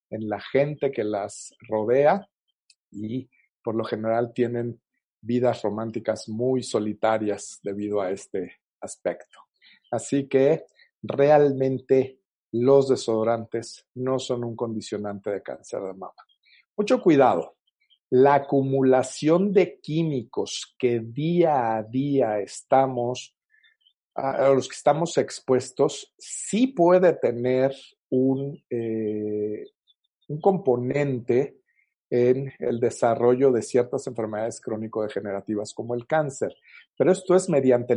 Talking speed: 110 wpm